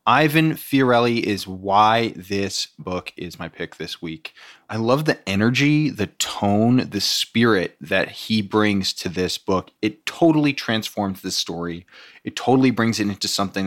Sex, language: male, English